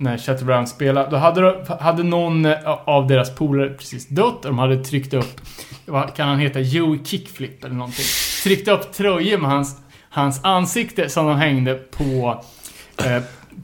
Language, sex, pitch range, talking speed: Swedish, male, 135-200 Hz, 165 wpm